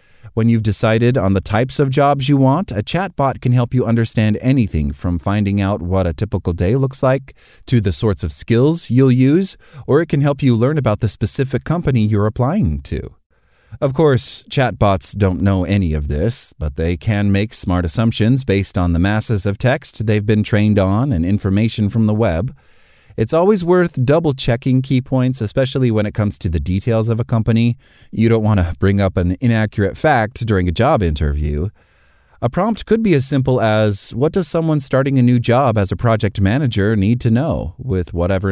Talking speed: 200 wpm